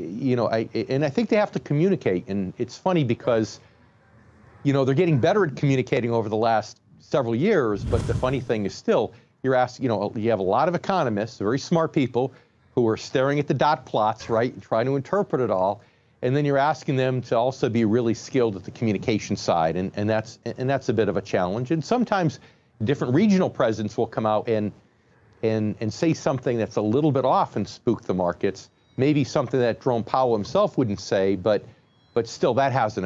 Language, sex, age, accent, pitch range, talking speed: English, male, 40-59, American, 110-140 Hz, 215 wpm